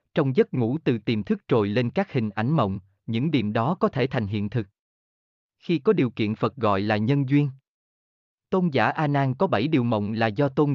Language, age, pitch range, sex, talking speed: Vietnamese, 20-39, 110-155 Hz, male, 225 wpm